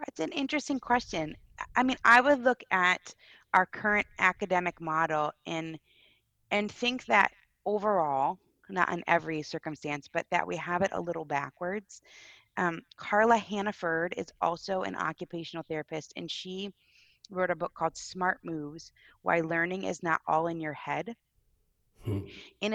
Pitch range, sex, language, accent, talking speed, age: 160-205 Hz, female, English, American, 150 wpm, 20-39